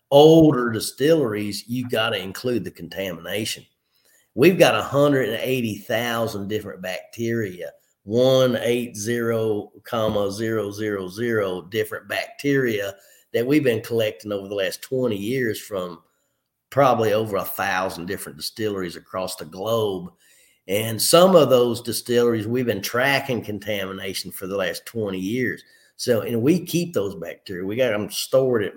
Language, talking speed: English, 125 wpm